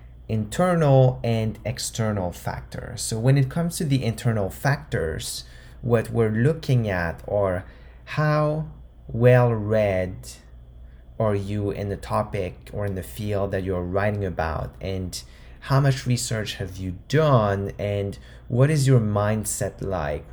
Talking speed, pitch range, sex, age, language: 135 wpm, 90-120 Hz, male, 30-49, English